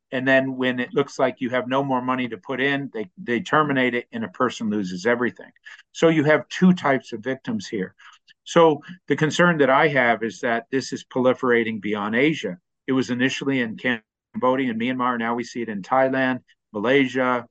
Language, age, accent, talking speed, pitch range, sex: English, 50-69, American, 200 wpm, 115-140 Hz, male